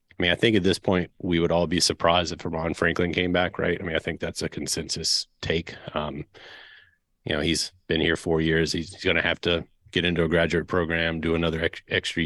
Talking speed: 235 wpm